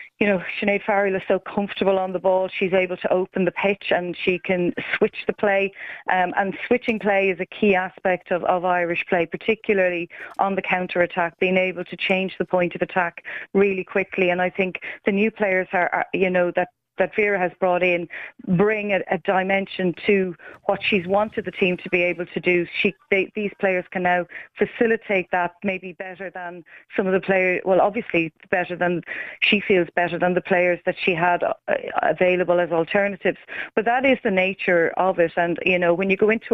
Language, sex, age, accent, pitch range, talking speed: English, female, 30-49, Irish, 175-195 Hz, 200 wpm